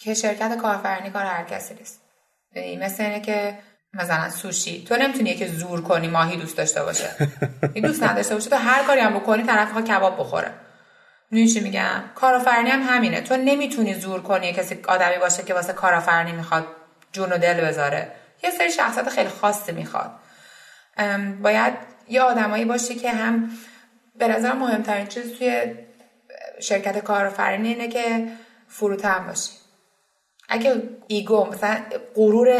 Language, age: Persian, 20-39